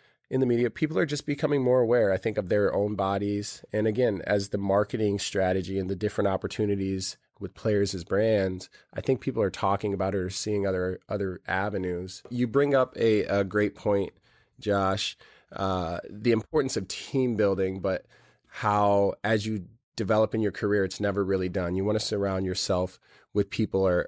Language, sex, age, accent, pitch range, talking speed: English, male, 20-39, American, 95-120 Hz, 185 wpm